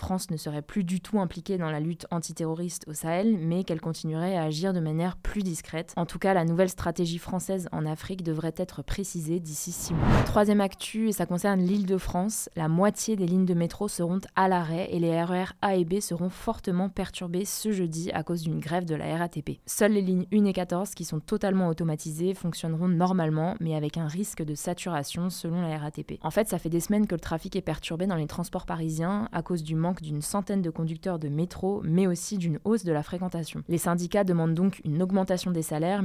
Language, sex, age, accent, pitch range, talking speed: French, female, 20-39, French, 160-185 Hz, 220 wpm